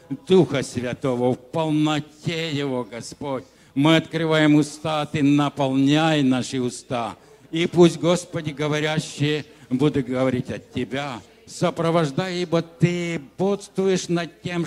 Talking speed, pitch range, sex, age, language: 110 wpm, 130-170 Hz, male, 60-79, English